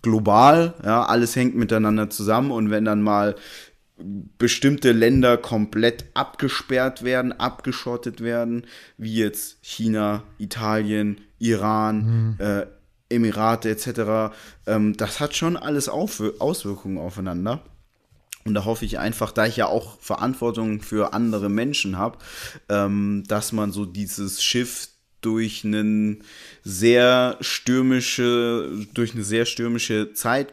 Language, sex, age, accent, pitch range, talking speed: German, male, 20-39, German, 105-120 Hz, 120 wpm